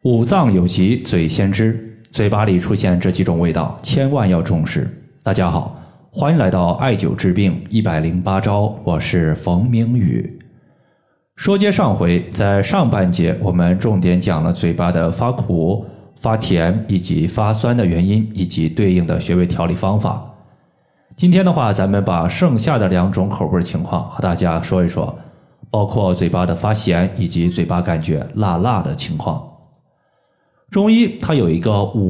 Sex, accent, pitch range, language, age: male, native, 90-125 Hz, Chinese, 20-39